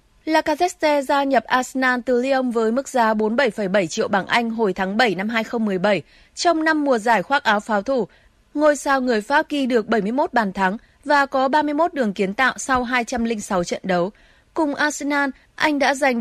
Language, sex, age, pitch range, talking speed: Vietnamese, female, 20-39, 220-280 Hz, 190 wpm